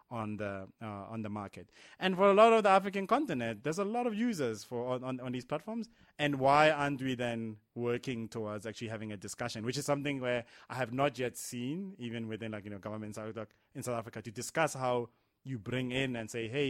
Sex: male